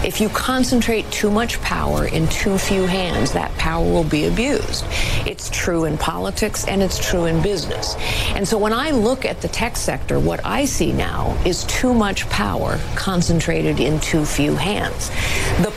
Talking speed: 180 wpm